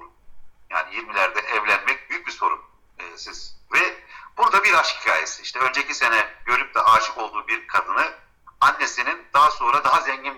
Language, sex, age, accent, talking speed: Turkish, male, 50-69, native, 155 wpm